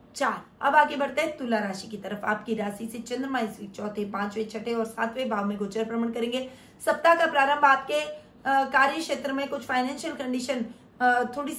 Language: Hindi